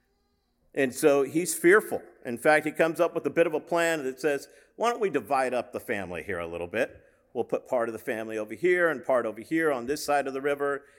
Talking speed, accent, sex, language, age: 250 wpm, American, male, English, 50-69